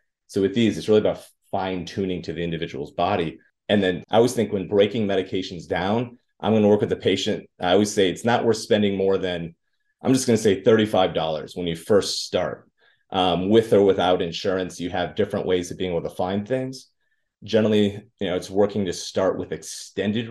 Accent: American